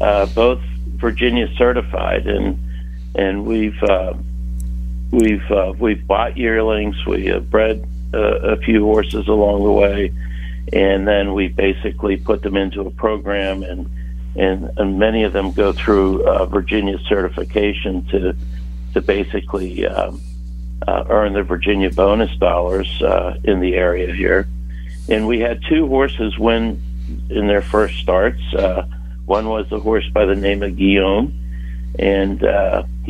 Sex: male